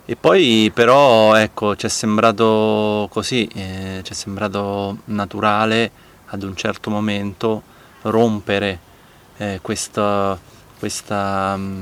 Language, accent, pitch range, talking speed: Italian, native, 95-110 Hz, 105 wpm